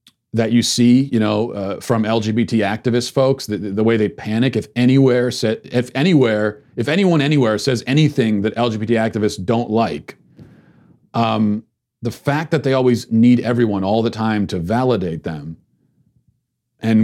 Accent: American